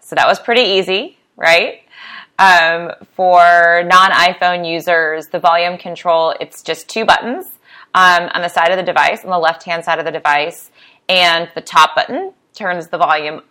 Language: English